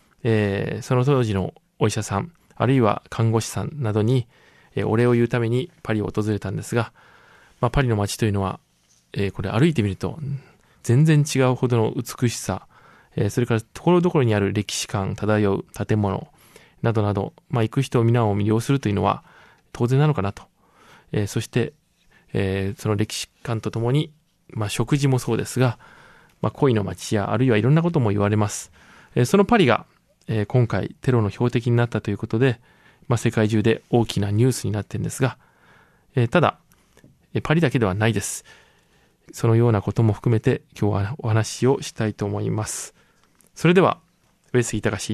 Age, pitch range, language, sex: 20-39, 105-130 Hz, Japanese, male